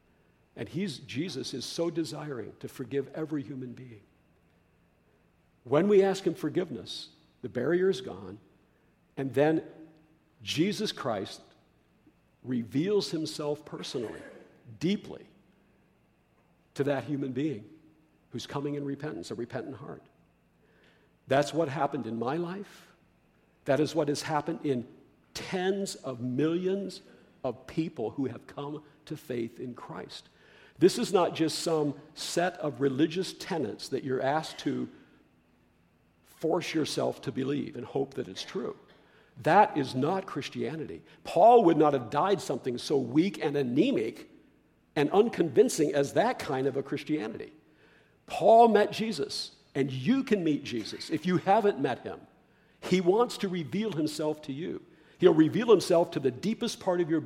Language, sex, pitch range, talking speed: English, male, 135-170 Hz, 140 wpm